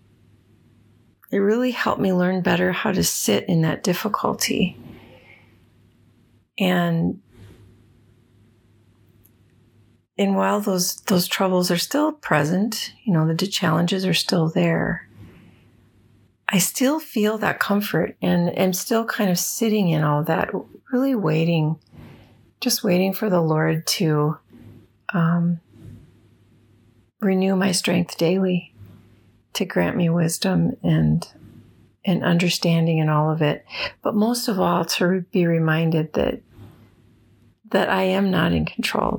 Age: 40-59